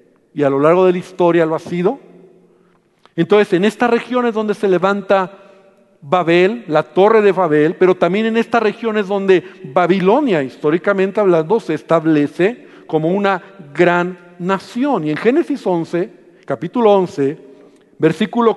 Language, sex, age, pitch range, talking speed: Spanish, male, 50-69, 170-215 Hz, 140 wpm